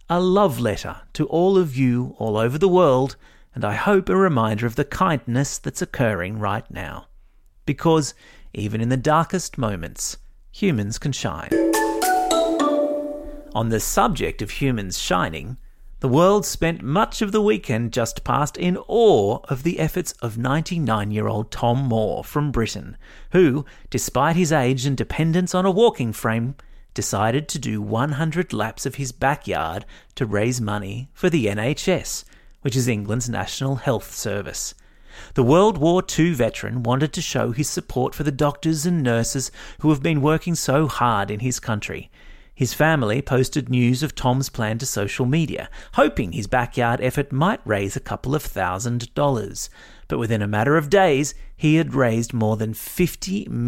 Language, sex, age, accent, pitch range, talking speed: English, male, 30-49, Australian, 115-160 Hz, 160 wpm